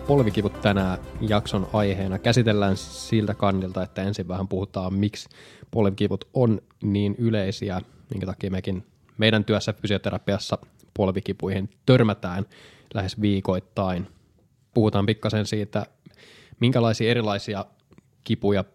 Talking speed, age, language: 100 wpm, 20-39, Finnish